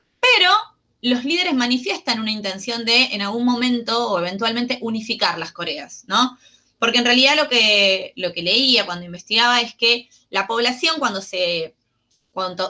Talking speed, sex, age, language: 155 wpm, female, 20-39, Spanish